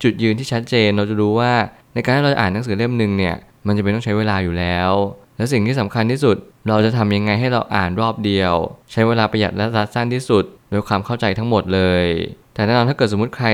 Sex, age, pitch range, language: male, 20-39, 100-120 Hz, Thai